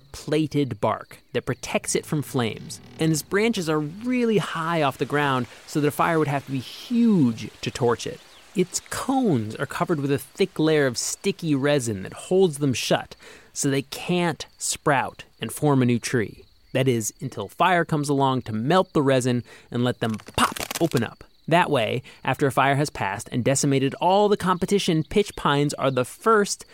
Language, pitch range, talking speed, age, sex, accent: English, 130-175 Hz, 190 wpm, 30-49, male, American